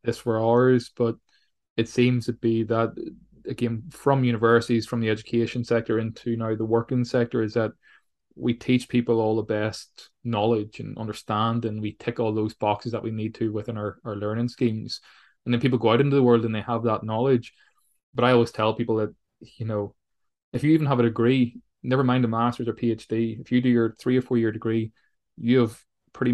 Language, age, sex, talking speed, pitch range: English, 20-39, male, 210 wpm, 110-120 Hz